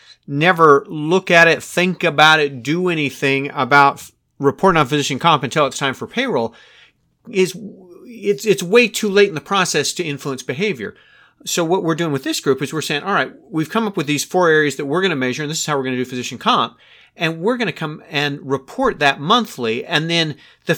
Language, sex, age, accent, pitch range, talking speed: English, male, 40-59, American, 140-185 Hz, 220 wpm